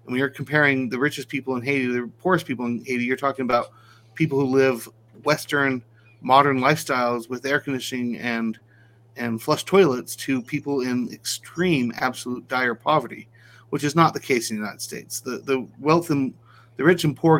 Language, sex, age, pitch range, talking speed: English, male, 30-49, 115-140 Hz, 185 wpm